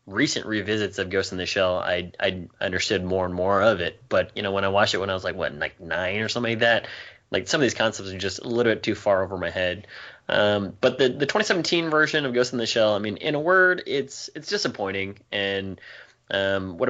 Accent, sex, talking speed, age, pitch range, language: American, male, 250 wpm, 20-39, 95-120 Hz, English